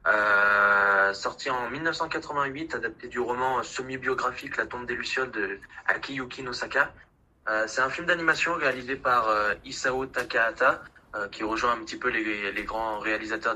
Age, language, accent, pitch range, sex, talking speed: 20-39, French, French, 110-135 Hz, male, 155 wpm